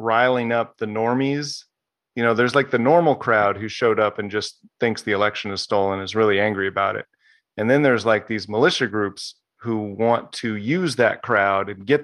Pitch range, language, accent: 105-125 Hz, English, American